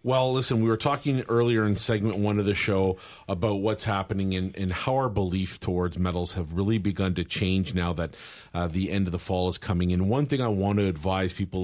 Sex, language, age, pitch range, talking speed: male, English, 40-59, 90-105 Hz, 230 wpm